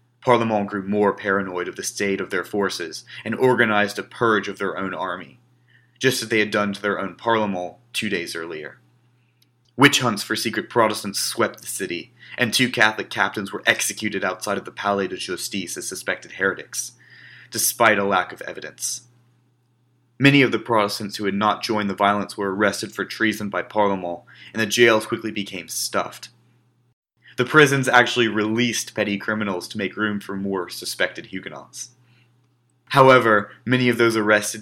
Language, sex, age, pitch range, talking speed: English, male, 30-49, 100-125 Hz, 170 wpm